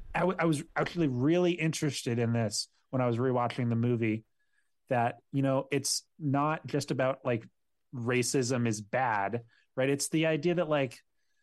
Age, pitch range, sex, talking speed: 30-49, 115-145 Hz, male, 160 wpm